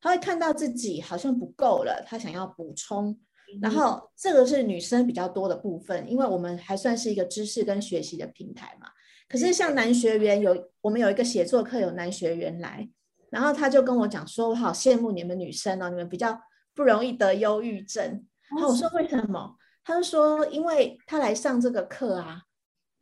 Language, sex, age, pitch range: Chinese, female, 30-49, 200-265 Hz